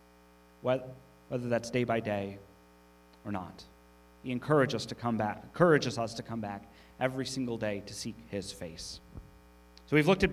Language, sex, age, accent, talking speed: English, male, 30-49, American, 170 wpm